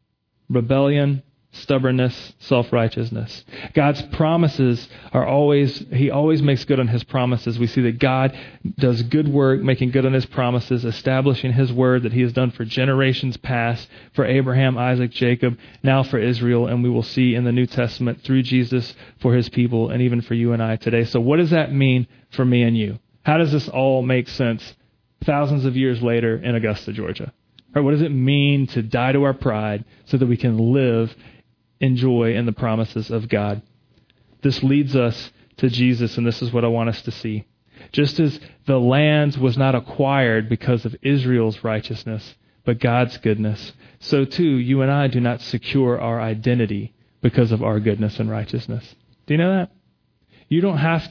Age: 30-49